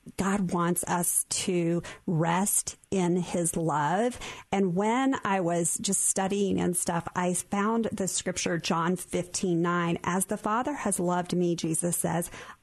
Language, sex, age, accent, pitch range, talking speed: English, female, 50-69, American, 175-200 Hz, 145 wpm